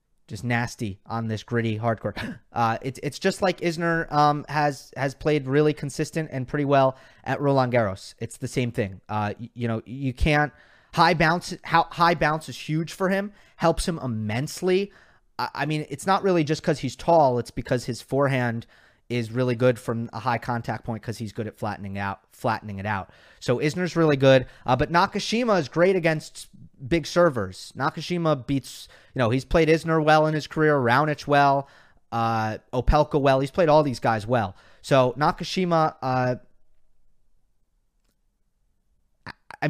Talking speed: 170 wpm